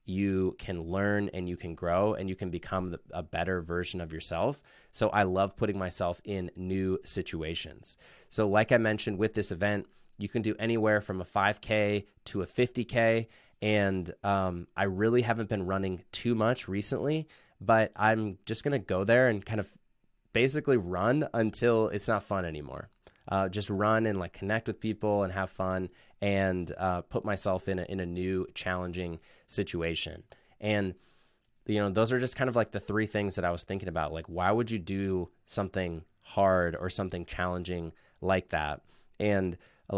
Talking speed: 180 wpm